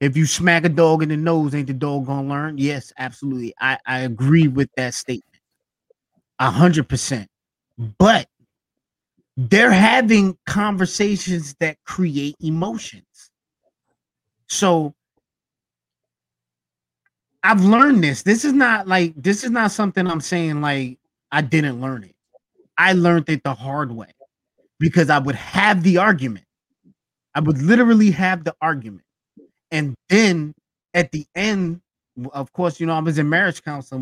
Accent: American